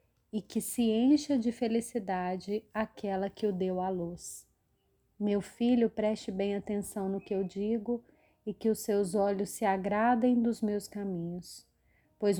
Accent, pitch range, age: Brazilian, 195-240 Hz, 30-49